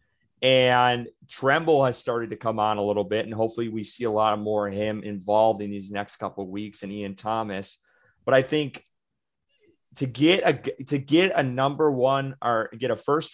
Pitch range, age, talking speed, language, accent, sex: 110-140 Hz, 30-49, 200 wpm, English, American, male